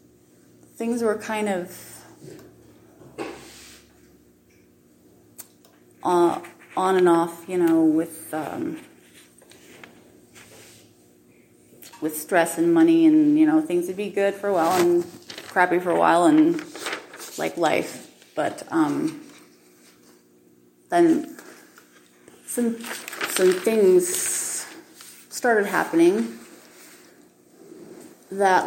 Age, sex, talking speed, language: 30-49, female, 90 wpm, English